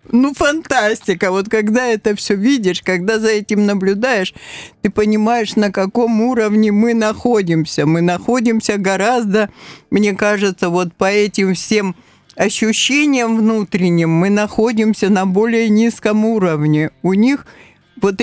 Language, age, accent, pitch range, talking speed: Russian, 50-69, native, 180-225 Hz, 125 wpm